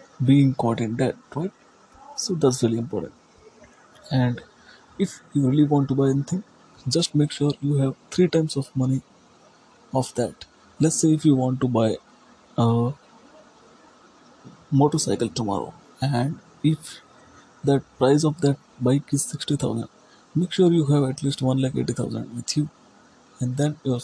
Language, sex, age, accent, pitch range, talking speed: English, male, 30-49, Indian, 135-160 Hz, 155 wpm